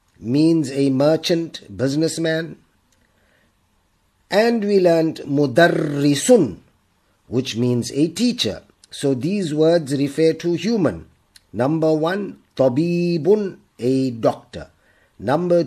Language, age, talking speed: Arabic, 50-69, 90 wpm